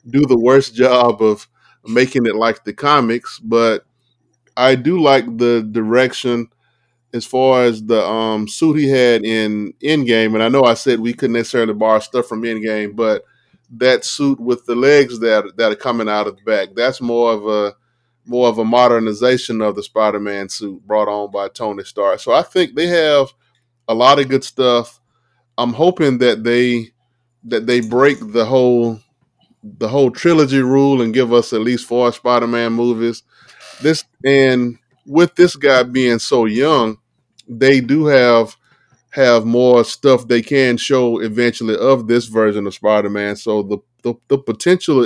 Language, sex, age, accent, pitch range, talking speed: English, male, 20-39, American, 115-130 Hz, 170 wpm